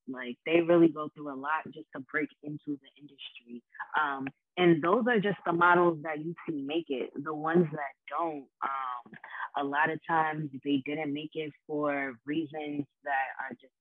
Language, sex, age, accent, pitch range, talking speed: English, female, 20-39, American, 135-160 Hz, 185 wpm